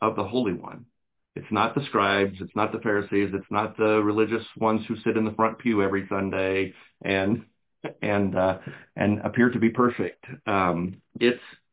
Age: 50-69